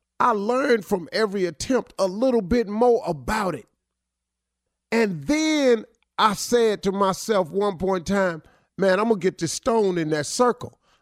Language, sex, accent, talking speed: English, male, American, 170 wpm